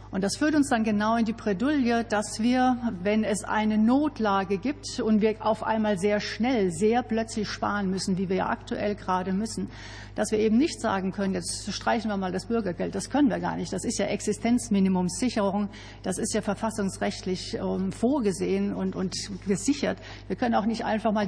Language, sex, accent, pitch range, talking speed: German, female, German, 200-230 Hz, 190 wpm